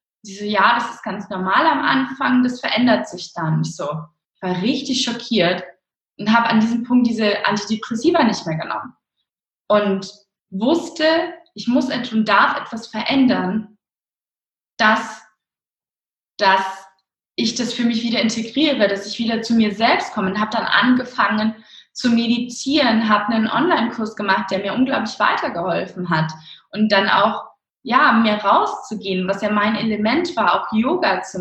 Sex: female